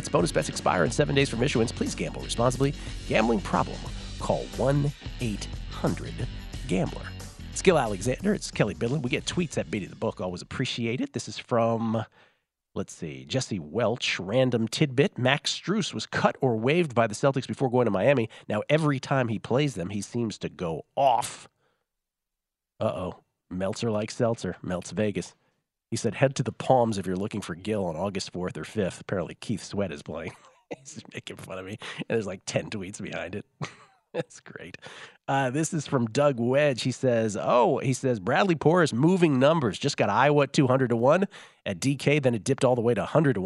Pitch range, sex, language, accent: 105-140 Hz, male, English, American